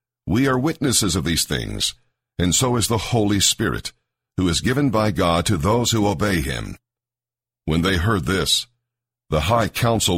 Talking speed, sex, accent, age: 170 wpm, male, American, 60-79